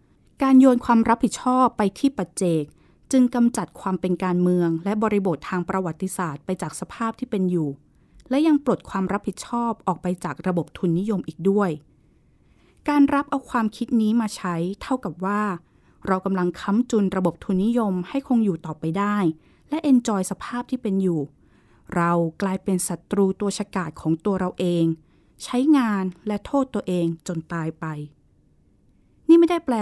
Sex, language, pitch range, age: female, Thai, 175-235 Hz, 20-39